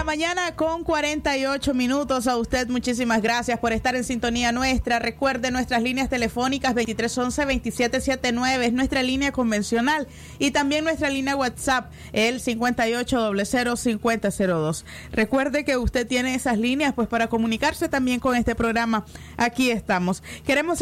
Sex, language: female, Spanish